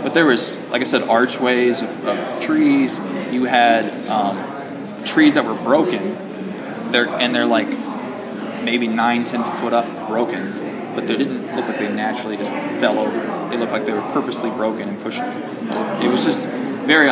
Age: 20-39